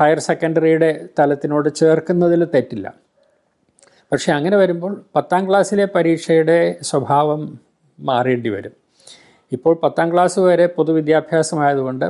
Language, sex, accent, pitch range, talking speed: Malayalam, male, native, 135-170 Hz, 95 wpm